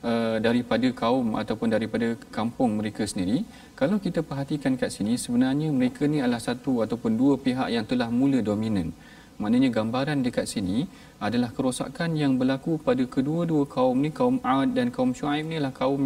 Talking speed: 170 wpm